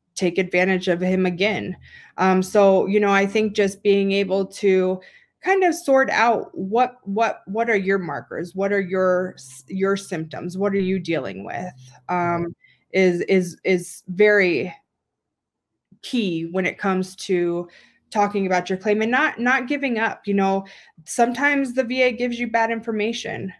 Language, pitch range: English, 180-210 Hz